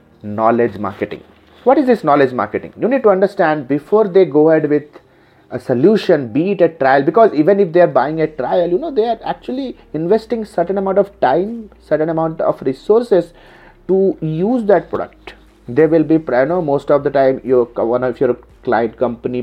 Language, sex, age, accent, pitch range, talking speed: Hindi, male, 30-49, native, 125-175 Hz, 195 wpm